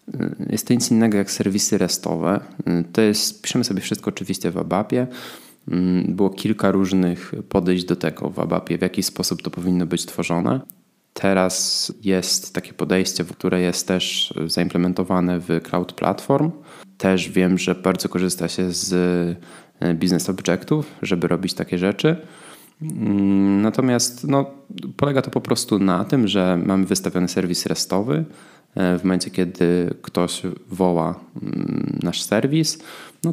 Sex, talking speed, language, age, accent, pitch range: male, 135 wpm, Polish, 20-39, native, 90-100 Hz